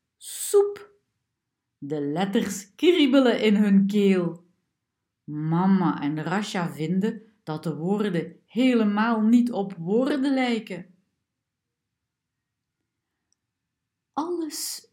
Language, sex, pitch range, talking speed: Dutch, female, 160-245 Hz, 80 wpm